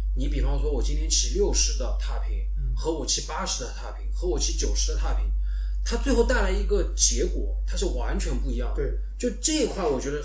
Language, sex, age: Chinese, male, 20-39